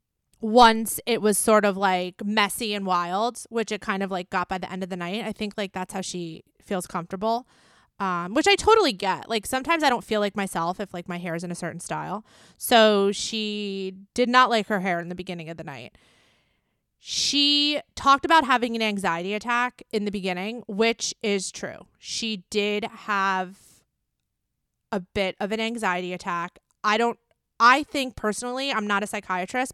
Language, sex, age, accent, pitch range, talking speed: English, female, 20-39, American, 190-225 Hz, 190 wpm